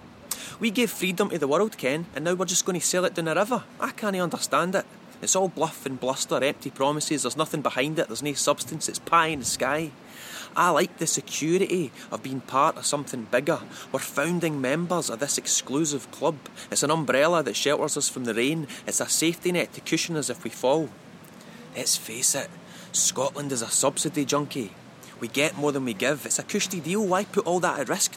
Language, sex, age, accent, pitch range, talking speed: English, male, 20-39, British, 145-195 Hz, 215 wpm